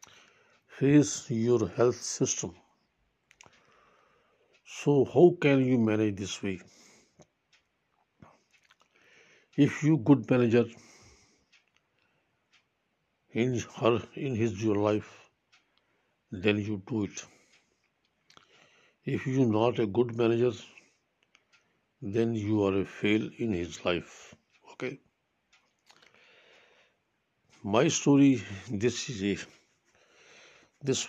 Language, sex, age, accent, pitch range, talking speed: English, male, 60-79, Indian, 105-130 Hz, 90 wpm